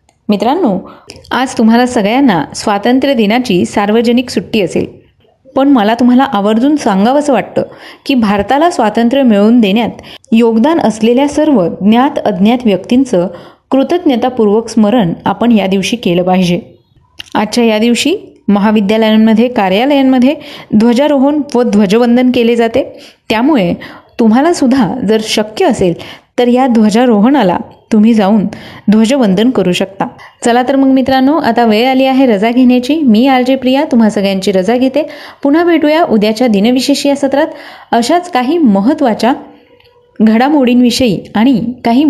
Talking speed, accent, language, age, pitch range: 120 wpm, native, Marathi, 30-49, 215-275 Hz